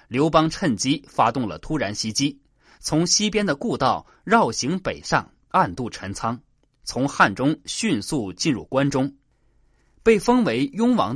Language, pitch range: Chinese, 125-165 Hz